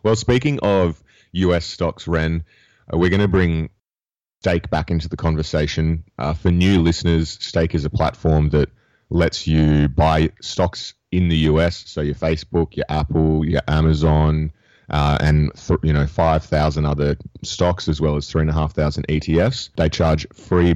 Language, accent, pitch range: English, Australian, 75-85 Hz